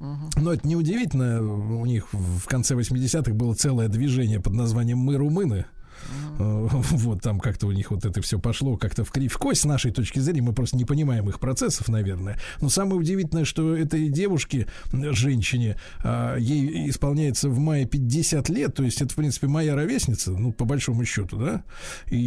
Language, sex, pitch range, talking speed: Russian, male, 110-145 Hz, 170 wpm